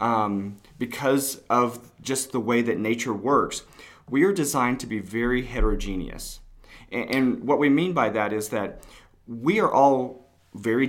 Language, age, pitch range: English, 30-49, 115-150 Hz